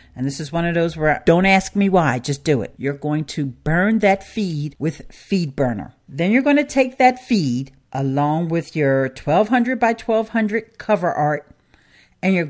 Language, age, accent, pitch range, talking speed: English, 50-69, American, 135-165 Hz, 190 wpm